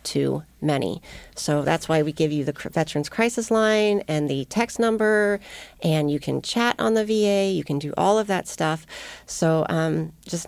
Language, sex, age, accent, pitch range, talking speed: English, female, 40-59, American, 160-205 Hz, 190 wpm